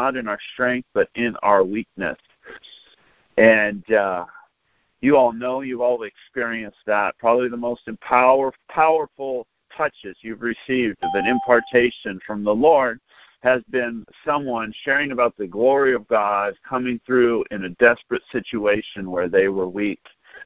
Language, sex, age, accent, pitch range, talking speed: English, male, 50-69, American, 110-130 Hz, 145 wpm